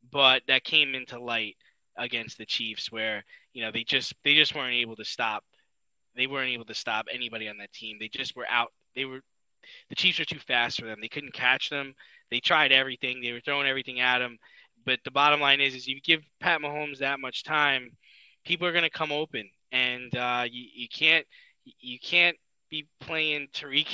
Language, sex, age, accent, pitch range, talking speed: English, male, 20-39, American, 125-150 Hz, 210 wpm